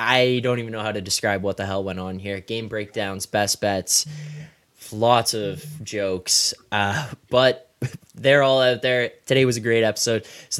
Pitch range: 95-115 Hz